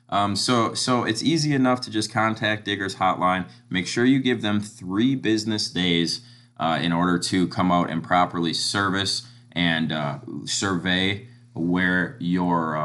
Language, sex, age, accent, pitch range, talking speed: English, male, 20-39, American, 85-110 Hz, 160 wpm